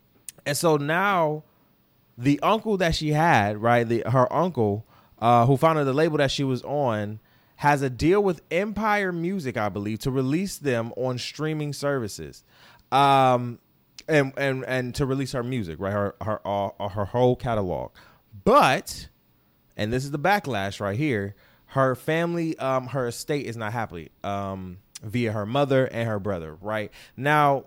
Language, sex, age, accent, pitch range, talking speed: English, male, 20-39, American, 105-140 Hz, 165 wpm